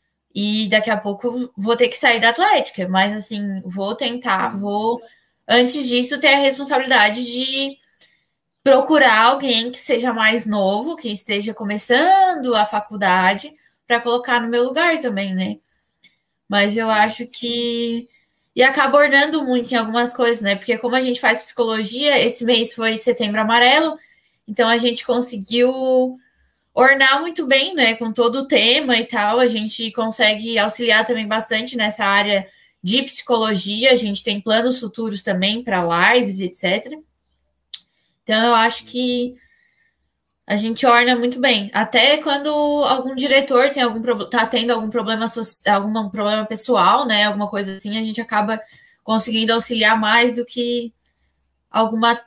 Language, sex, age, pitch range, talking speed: Portuguese, female, 10-29, 215-250 Hz, 145 wpm